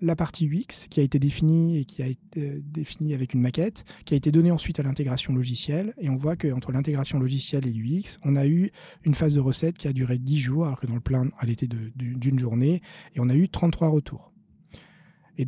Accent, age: French, 20-39